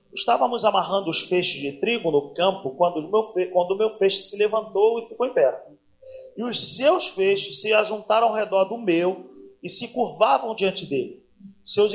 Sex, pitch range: male, 180-240 Hz